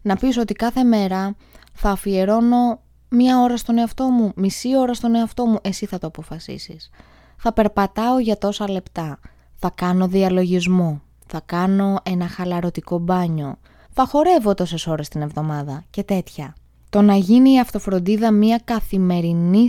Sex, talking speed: female, 150 wpm